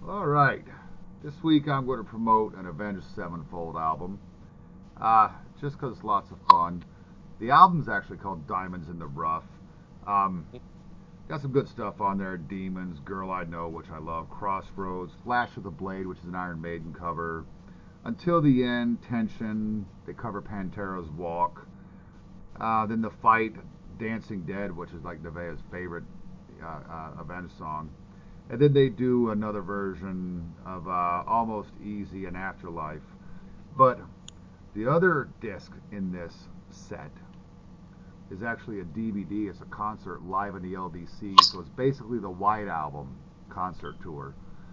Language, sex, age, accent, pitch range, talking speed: English, male, 40-59, American, 90-110 Hz, 150 wpm